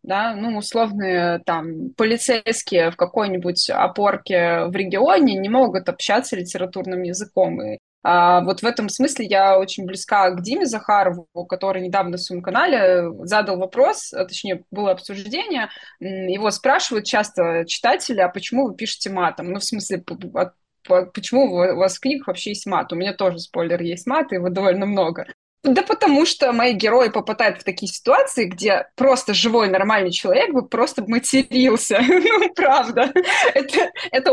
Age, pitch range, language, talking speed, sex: 20-39, 185-245 Hz, Russian, 150 wpm, female